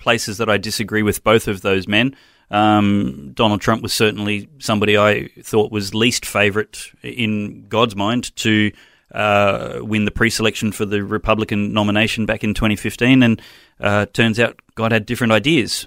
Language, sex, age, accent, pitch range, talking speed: English, male, 30-49, Australian, 100-115 Hz, 165 wpm